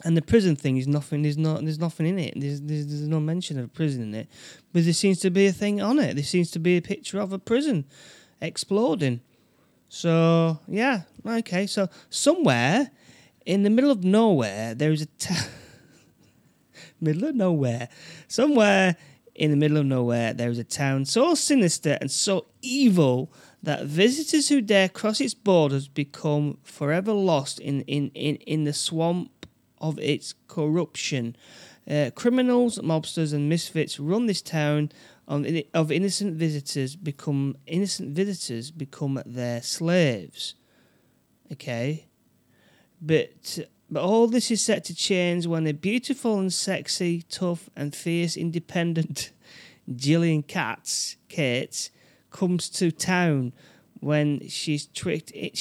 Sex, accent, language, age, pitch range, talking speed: male, British, English, 30-49, 145-190 Hz, 150 wpm